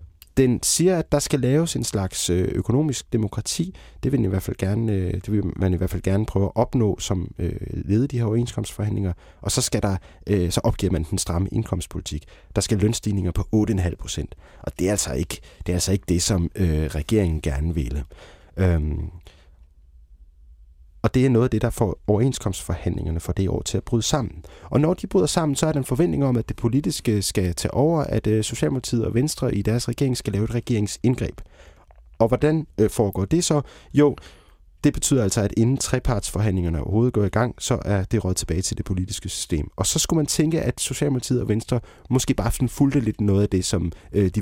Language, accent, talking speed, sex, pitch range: Danish, native, 200 wpm, male, 90-120 Hz